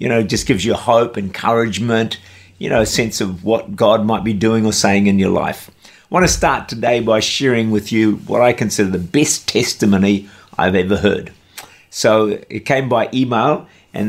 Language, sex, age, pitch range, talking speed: English, male, 50-69, 100-125 Hz, 200 wpm